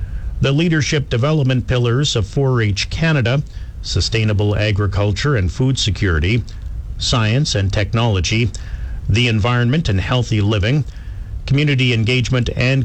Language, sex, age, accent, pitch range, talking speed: English, male, 50-69, American, 100-125 Hz, 105 wpm